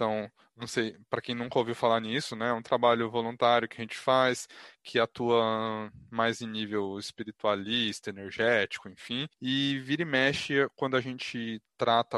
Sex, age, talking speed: male, 20-39, 170 wpm